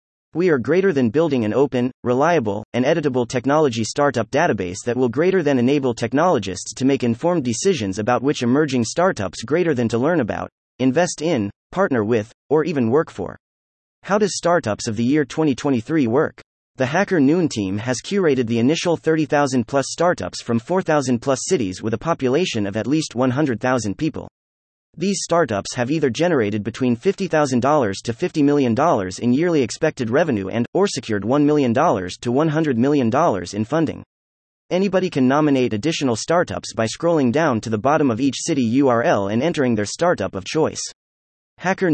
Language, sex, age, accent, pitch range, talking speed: English, male, 30-49, American, 110-155 Hz, 165 wpm